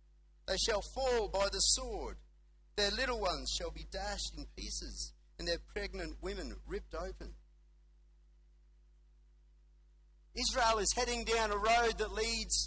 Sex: male